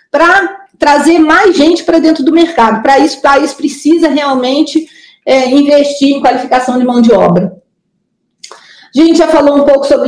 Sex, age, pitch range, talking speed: female, 40-59, 250-310 Hz, 165 wpm